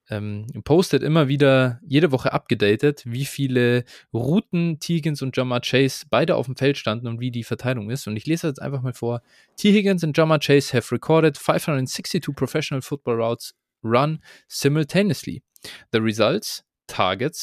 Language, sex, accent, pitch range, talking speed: German, male, German, 120-165 Hz, 160 wpm